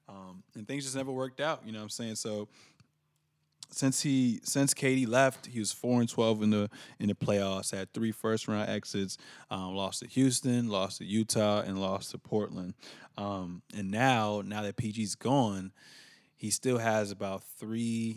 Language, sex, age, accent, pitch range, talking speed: English, male, 20-39, American, 100-125 Hz, 185 wpm